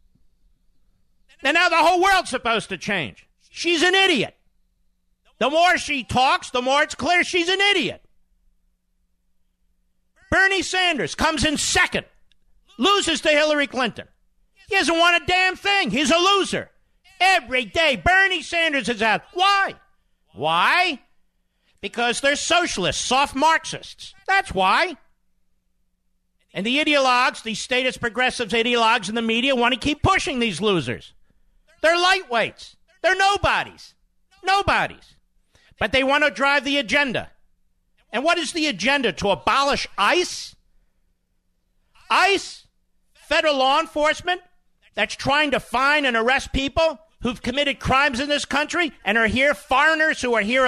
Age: 50-69